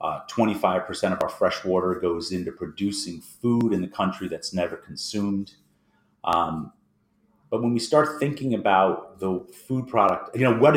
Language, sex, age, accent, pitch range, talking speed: English, male, 30-49, American, 90-110 Hz, 165 wpm